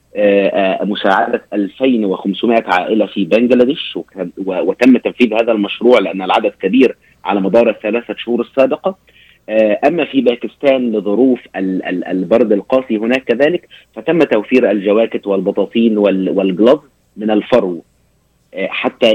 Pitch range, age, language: 100-120 Hz, 30-49, Arabic